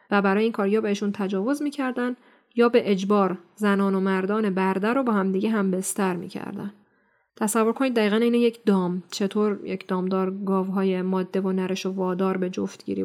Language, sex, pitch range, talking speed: Persian, female, 195-230 Hz, 180 wpm